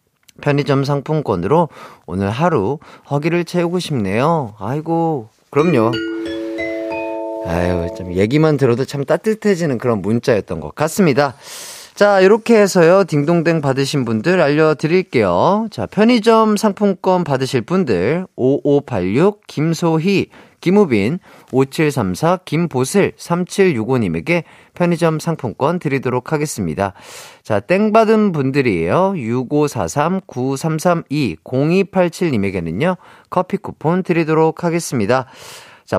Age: 40-59